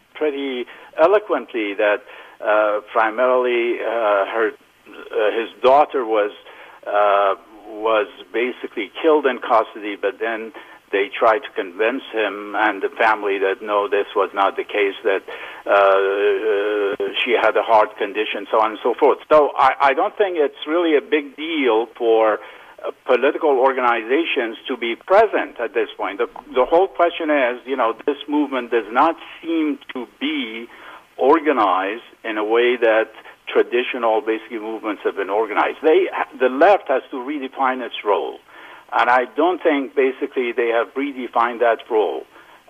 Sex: male